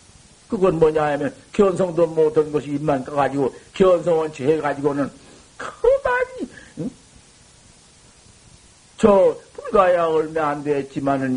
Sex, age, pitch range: male, 60-79, 190-260 Hz